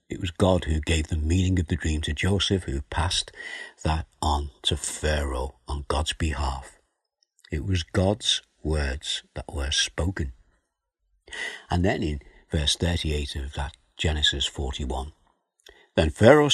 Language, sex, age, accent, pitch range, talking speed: English, male, 60-79, British, 75-100 Hz, 140 wpm